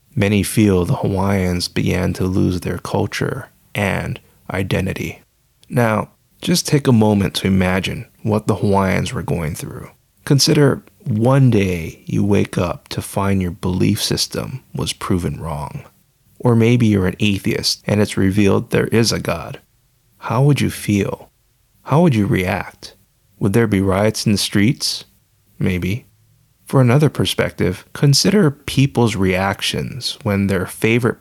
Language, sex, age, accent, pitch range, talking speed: English, male, 30-49, American, 95-120 Hz, 145 wpm